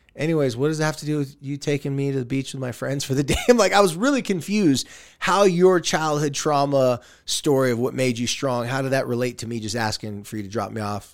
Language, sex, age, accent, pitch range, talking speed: English, male, 20-39, American, 110-145 Hz, 270 wpm